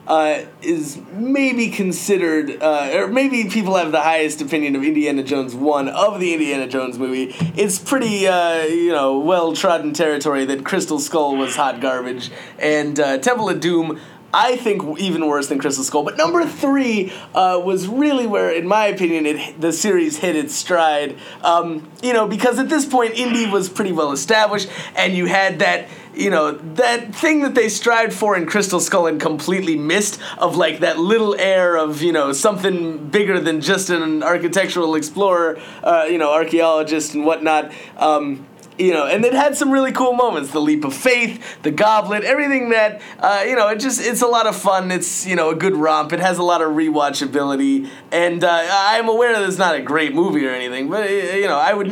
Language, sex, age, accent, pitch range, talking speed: English, male, 20-39, American, 150-210 Hz, 190 wpm